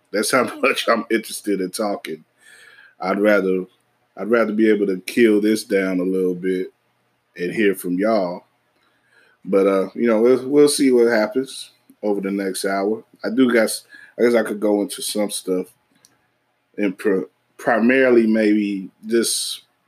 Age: 20-39